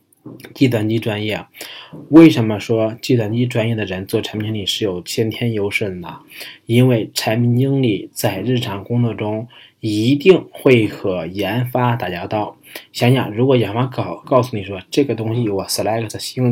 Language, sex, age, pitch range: Chinese, male, 20-39, 105-125 Hz